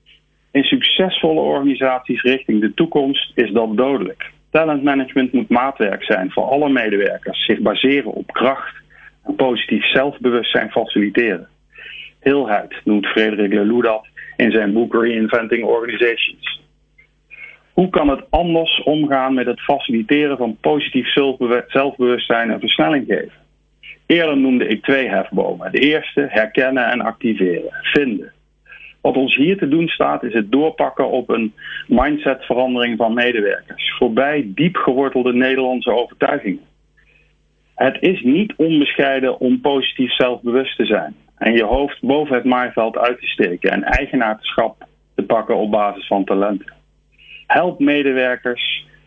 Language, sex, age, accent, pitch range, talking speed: Dutch, male, 40-59, Dutch, 115-140 Hz, 125 wpm